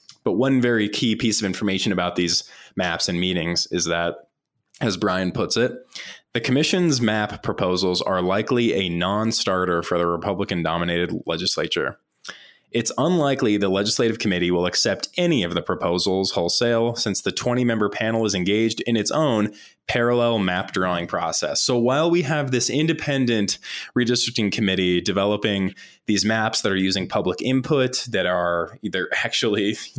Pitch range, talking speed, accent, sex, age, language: 95-120 Hz, 150 wpm, American, male, 20-39, English